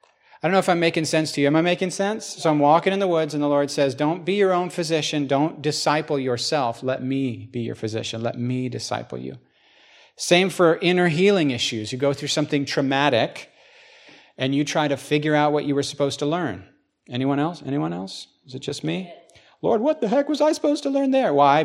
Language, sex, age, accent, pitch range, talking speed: English, male, 40-59, American, 130-160 Hz, 225 wpm